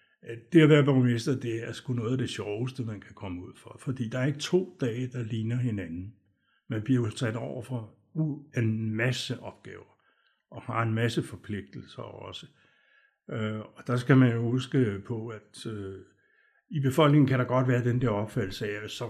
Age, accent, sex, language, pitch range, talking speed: 60-79, native, male, Danish, 105-130 Hz, 185 wpm